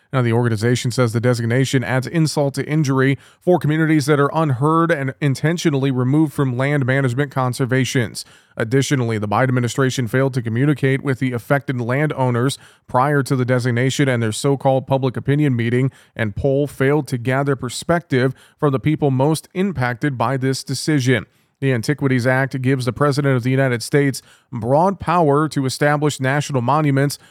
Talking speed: 160 wpm